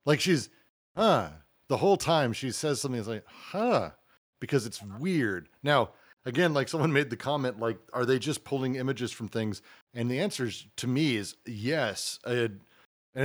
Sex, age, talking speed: male, 40-59, 175 wpm